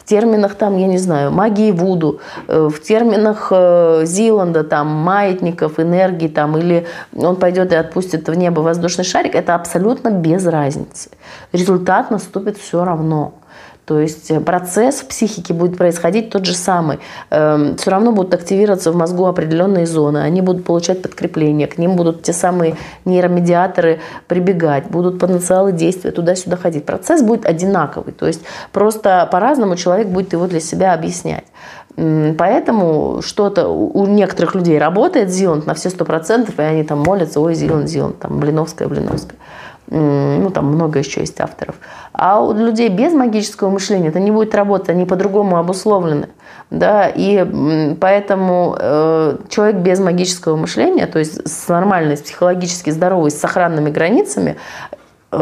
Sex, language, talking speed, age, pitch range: female, Russian, 145 wpm, 30-49, 160-195 Hz